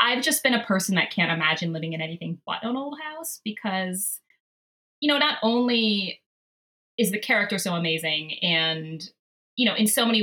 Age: 20-39